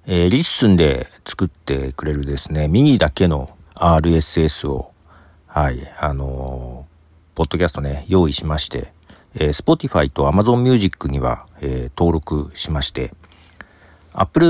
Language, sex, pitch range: Japanese, male, 75-115 Hz